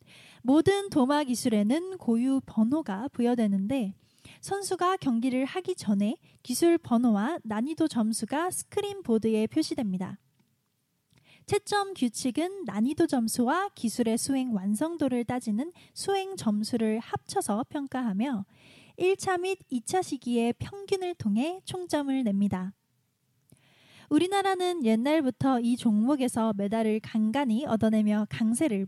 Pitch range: 220-325 Hz